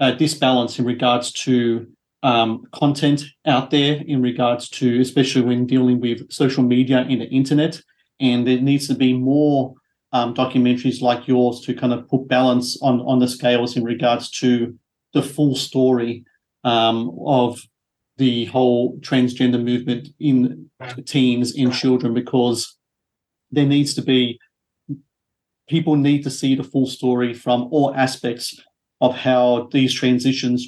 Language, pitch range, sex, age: English, 120-130 Hz, male, 40-59